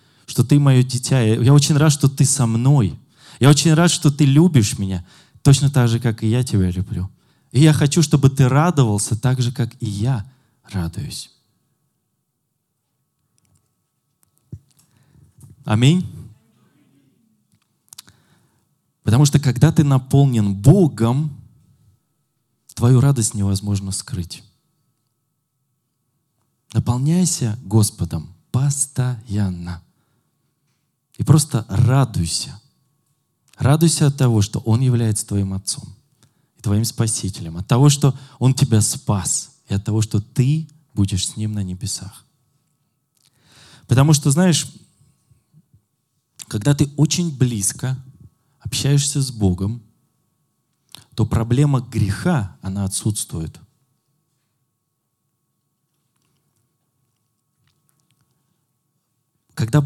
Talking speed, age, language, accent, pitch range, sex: 100 wpm, 20-39, Russian, native, 110-145 Hz, male